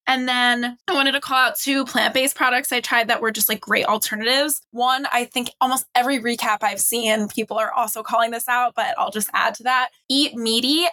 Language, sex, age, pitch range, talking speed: English, female, 10-29, 220-270 Hz, 220 wpm